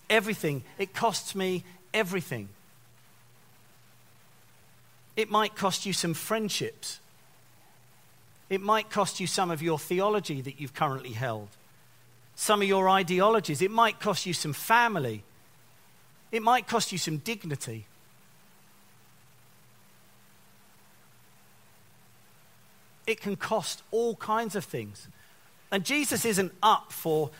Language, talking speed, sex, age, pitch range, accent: English, 110 wpm, male, 40-59, 130-195 Hz, British